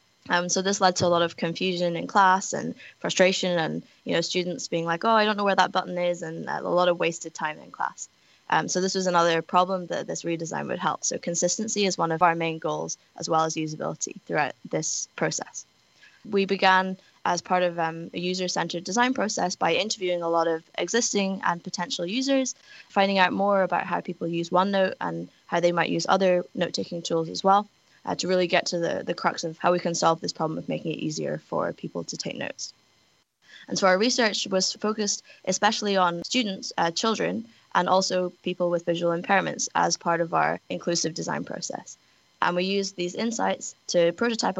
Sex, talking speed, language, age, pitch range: female, 205 wpm, English, 10-29, 170-195 Hz